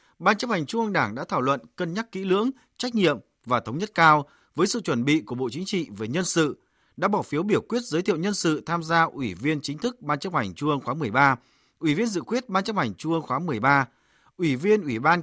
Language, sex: Vietnamese, male